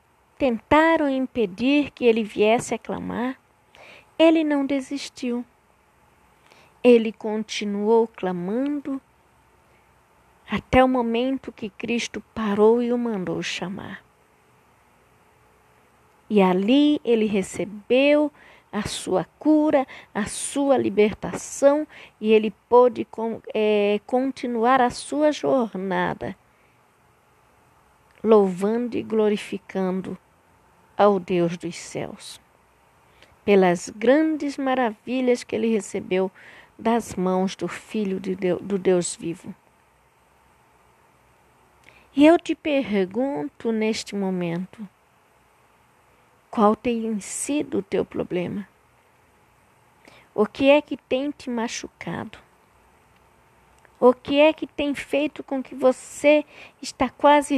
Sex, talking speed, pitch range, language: female, 95 wpm, 185-265 Hz, Portuguese